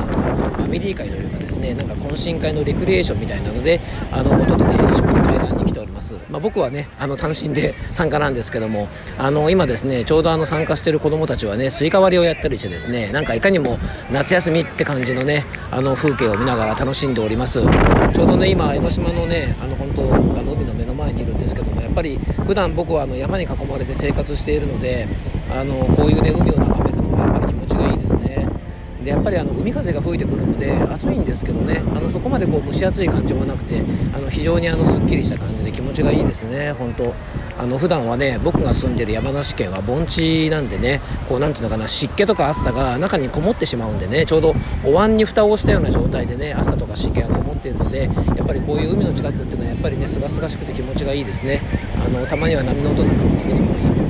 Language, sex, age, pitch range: Japanese, male, 40-59, 105-150 Hz